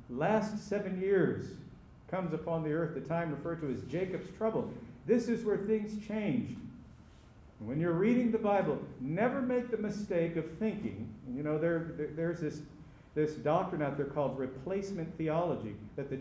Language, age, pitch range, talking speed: English, 50-69, 130-195 Hz, 165 wpm